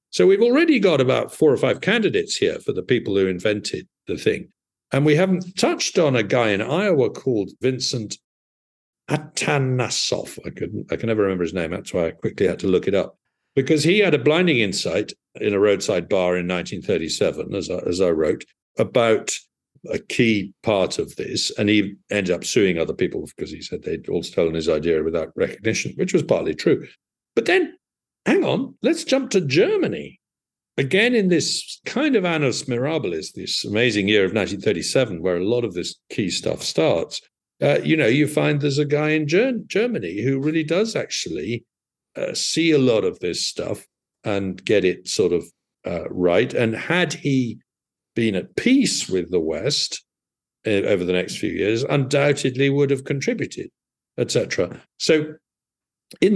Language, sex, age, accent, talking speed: English, male, 50-69, British, 180 wpm